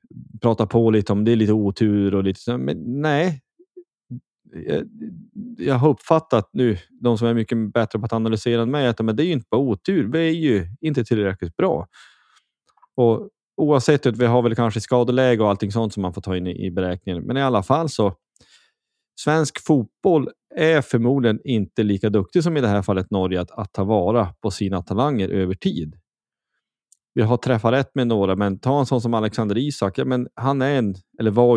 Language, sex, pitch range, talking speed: Swedish, male, 100-125 Hz, 200 wpm